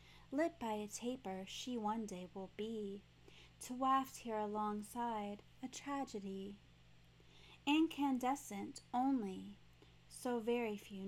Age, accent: 30-49, American